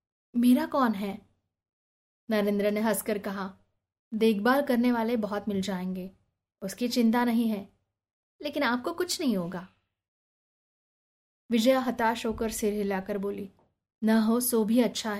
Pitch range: 210-245 Hz